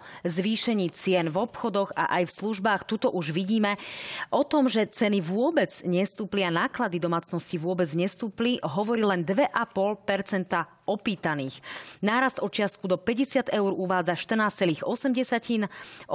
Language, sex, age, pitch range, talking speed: Slovak, female, 30-49, 180-225 Hz, 125 wpm